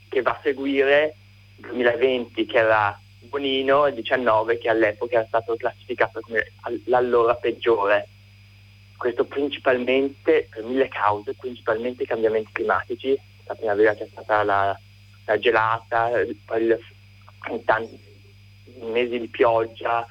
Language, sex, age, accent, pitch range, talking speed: Italian, male, 20-39, native, 100-120 Hz, 120 wpm